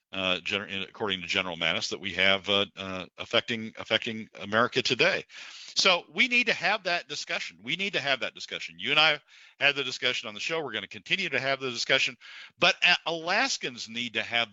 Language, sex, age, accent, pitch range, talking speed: English, male, 50-69, American, 105-130 Hz, 200 wpm